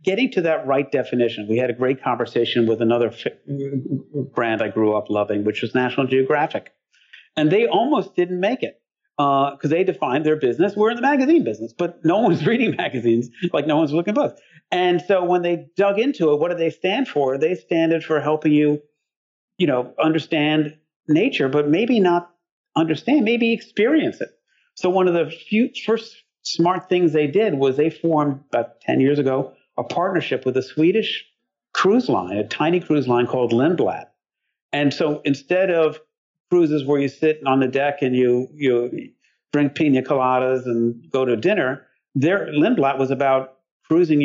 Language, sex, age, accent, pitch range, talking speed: English, male, 50-69, American, 130-170 Hz, 180 wpm